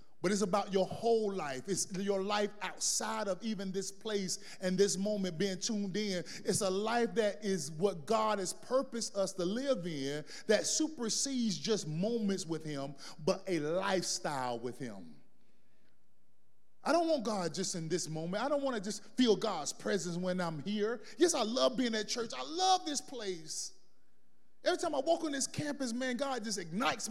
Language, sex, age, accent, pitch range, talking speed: English, male, 30-49, American, 190-260 Hz, 185 wpm